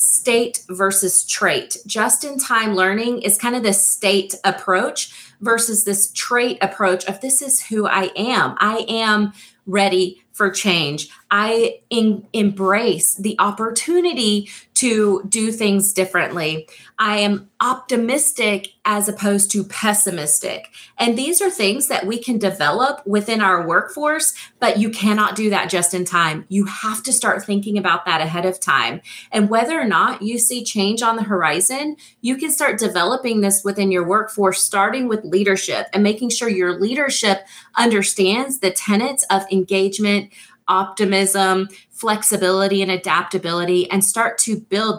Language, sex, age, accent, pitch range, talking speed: English, female, 30-49, American, 185-225 Hz, 150 wpm